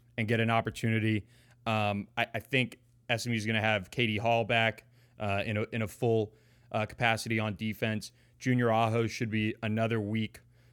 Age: 20-39